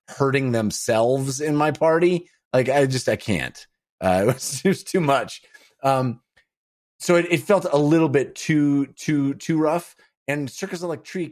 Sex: male